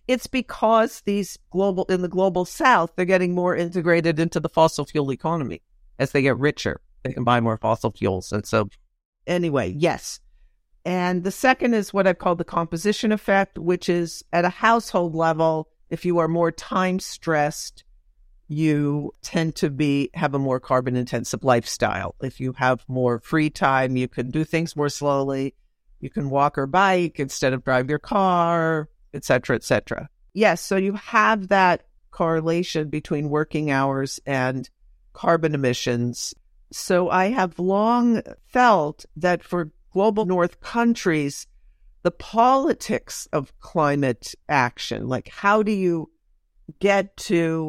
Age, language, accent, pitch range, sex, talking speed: 50-69, English, American, 135-190 Hz, female, 155 wpm